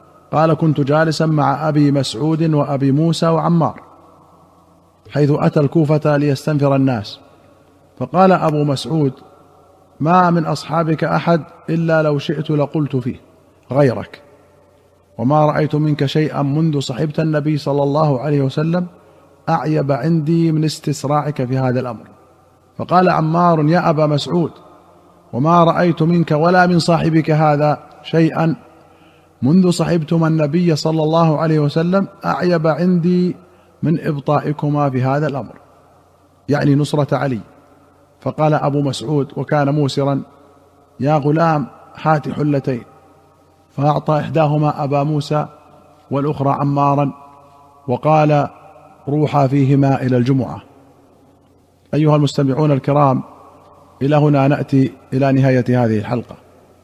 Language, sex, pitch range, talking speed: Arabic, male, 140-160 Hz, 110 wpm